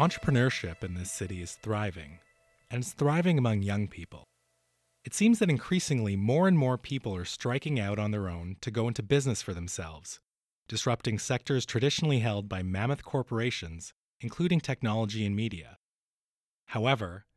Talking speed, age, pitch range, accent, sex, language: 150 wpm, 30-49, 95-135 Hz, American, male, English